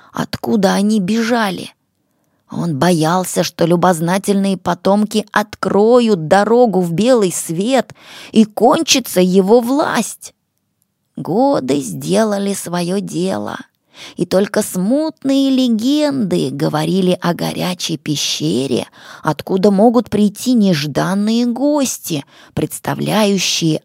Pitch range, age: 175-240 Hz, 20-39